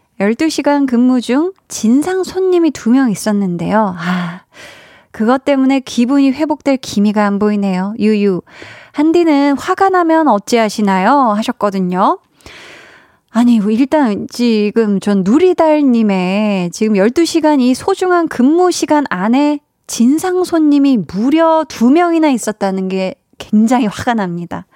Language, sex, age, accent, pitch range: Korean, female, 20-39, native, 210-290 Hz